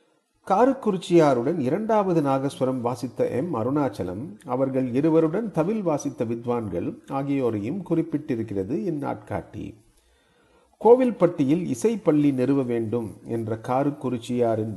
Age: 40-59